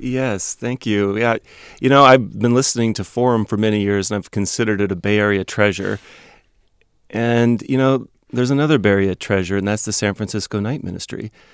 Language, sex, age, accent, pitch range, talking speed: English, male, 30-49, American, 100-115 Hz, 195 wpm